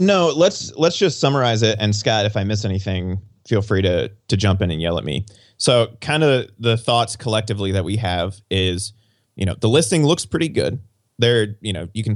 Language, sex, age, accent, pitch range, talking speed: English, male, 30-49, American, 100-115 Hz, 215 wpm